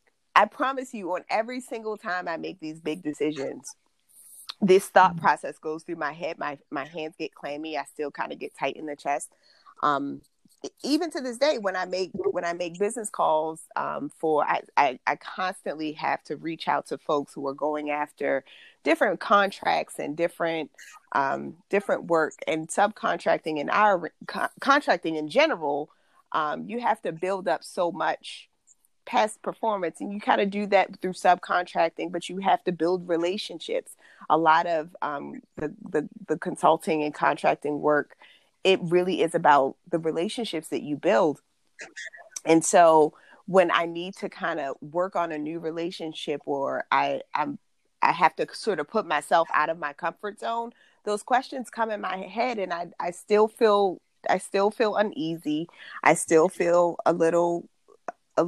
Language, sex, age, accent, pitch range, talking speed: English, female, 30-49, American, 160-210 Hz, 175 wpm